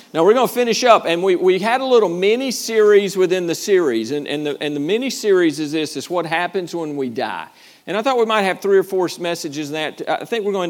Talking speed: 260 wpm